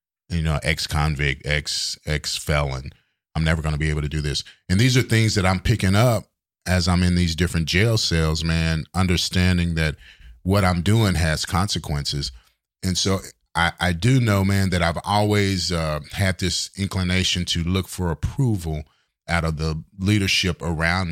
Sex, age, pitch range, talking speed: male, 30-49, 80-95 Hz, 170 wpm